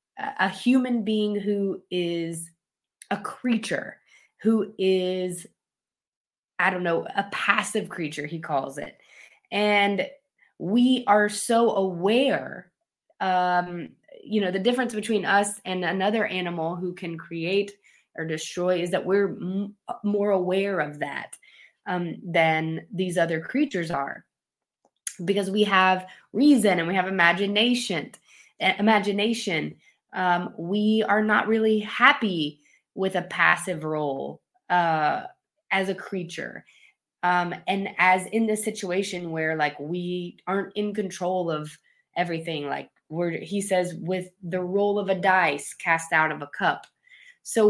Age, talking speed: 20-39, 135 wpm